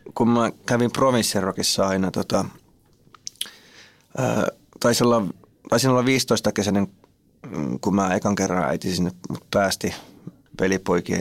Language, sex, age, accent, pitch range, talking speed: Finnish, male, 20-39, native, 95-110 Hz, 105 wpm